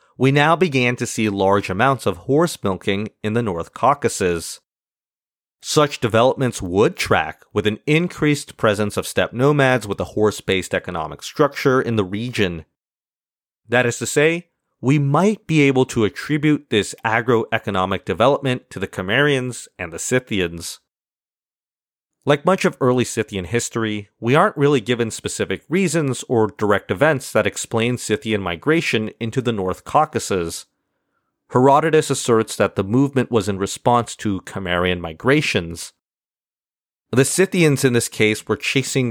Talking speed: 145 wpm